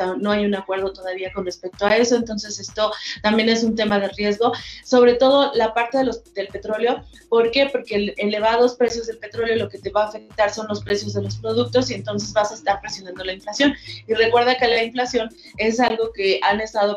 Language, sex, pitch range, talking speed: Spanish, female, 195-235 Hz, 225 wpm